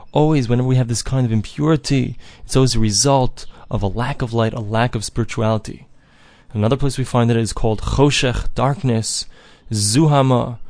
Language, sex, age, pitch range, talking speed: English, male, 20-39, 115-140 Hz, 180 wpm